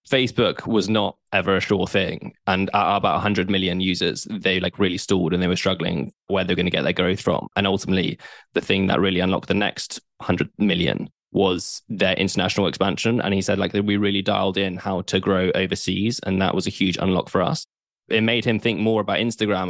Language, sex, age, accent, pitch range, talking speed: English, male, 10-29, British, 95-105 Hz, 220 wpm